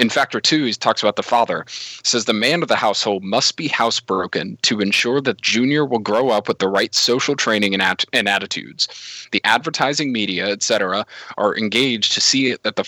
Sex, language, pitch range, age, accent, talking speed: male, English, 100-125 Hz, 30-49, American, 195 wpm